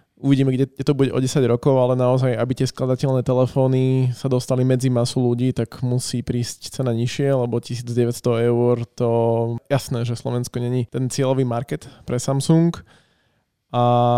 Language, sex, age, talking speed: Slovak, male, 20-39, 155 wpm